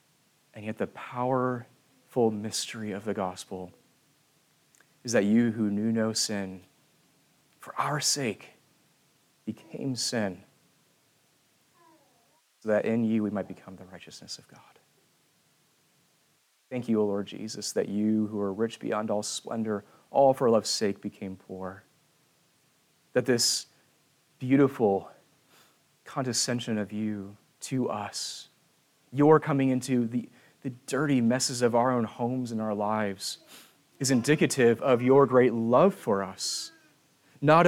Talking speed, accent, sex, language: 130 wpm, American, male, English